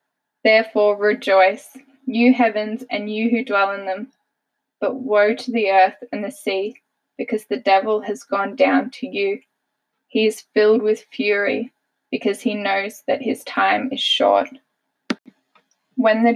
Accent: Australian